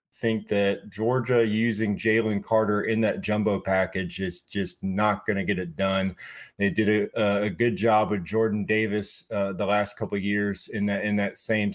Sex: male